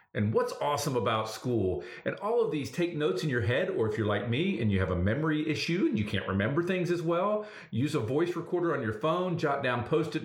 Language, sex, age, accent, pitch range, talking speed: English, male, 40-59, American, 105-150 Hz, 245 wpm